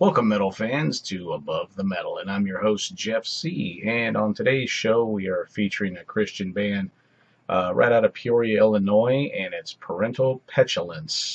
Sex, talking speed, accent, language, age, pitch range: male, 175 wpm, American, English, 40-59, 95-110 Hz